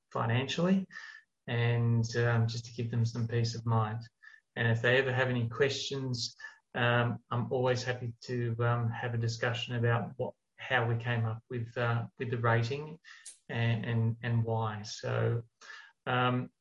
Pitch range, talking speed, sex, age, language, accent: 120-140 Hz, 160 wpm, male, 30-49, English, Australian